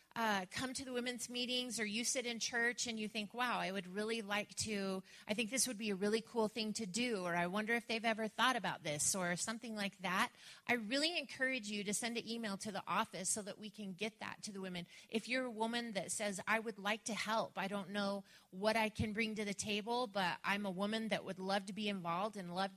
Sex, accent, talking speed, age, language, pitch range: female, American, 255 wpm, 30-49, English, 190-235 Hz